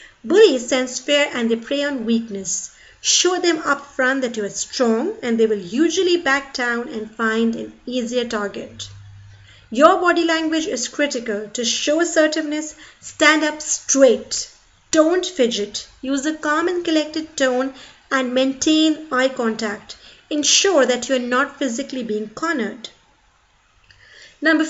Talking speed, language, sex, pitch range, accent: 145 wpm, English, female, 230-300 Hz, Indian